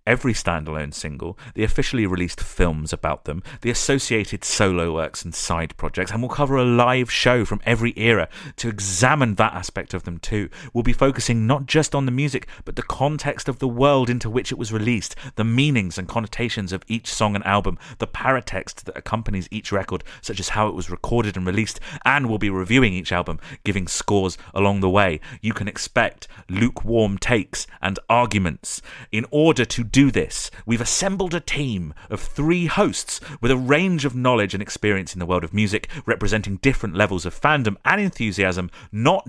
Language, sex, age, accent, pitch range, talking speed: English, male, 30-49, British, 95-130 Hz, 190 wpm